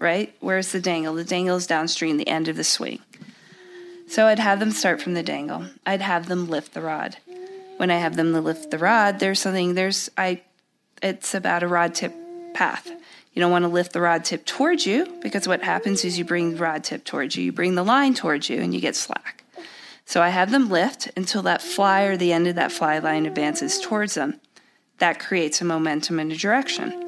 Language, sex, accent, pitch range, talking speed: English, female, American, 170-220 Hz, 220 wpm